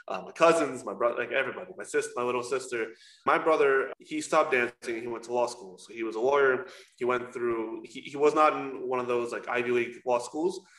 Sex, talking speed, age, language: male, 245 wpm, 20-39, English